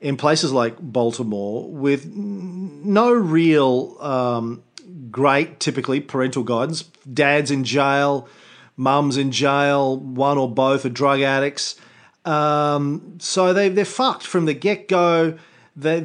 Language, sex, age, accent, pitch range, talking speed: English, male, 40-59, Australian, 130-170 Hz, 125 wpm